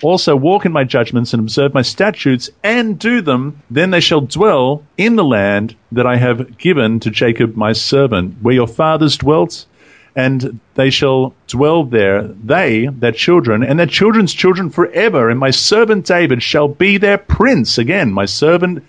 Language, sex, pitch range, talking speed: English, male, 115-155 Hz, 175 wpm